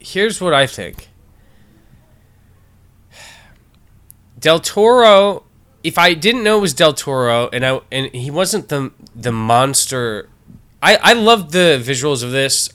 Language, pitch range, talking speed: English, 110-140 Hz, 135 wpm